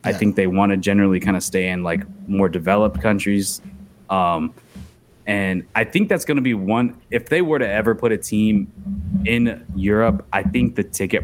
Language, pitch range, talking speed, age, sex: English, 95-115 Hz, 200 wpm, 20-39, male